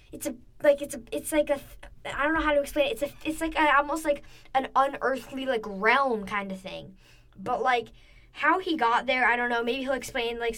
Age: 10-29